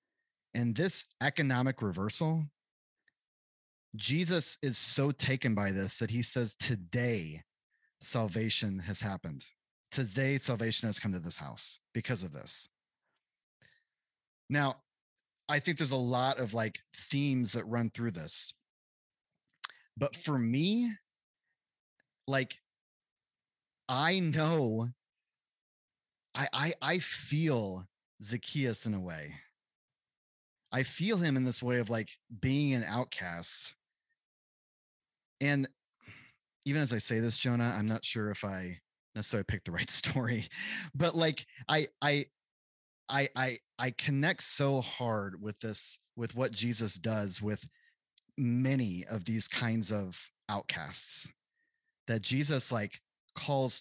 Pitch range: 110-140 Hz